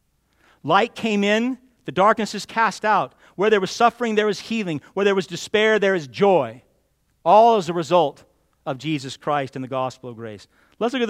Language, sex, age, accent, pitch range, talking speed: English, male, 40-59, American, 135-225 Hz, 200 wpm